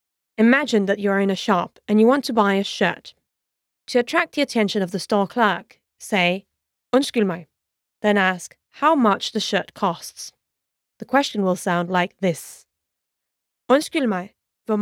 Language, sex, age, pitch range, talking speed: English, female, 20-39, 185-230 Hz, 160 wpm